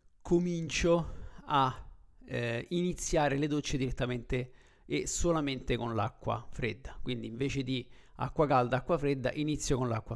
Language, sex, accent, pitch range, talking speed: Italian, male, native, 130-145 Hz, 130 wpm